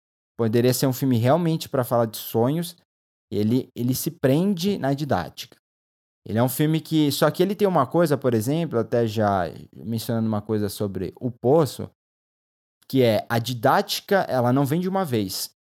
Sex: male